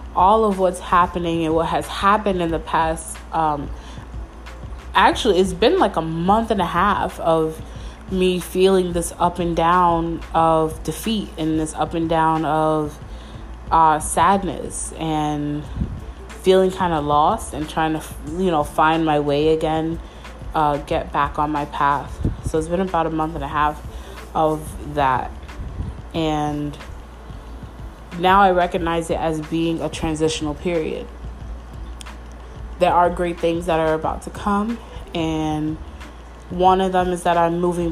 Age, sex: 20-39, female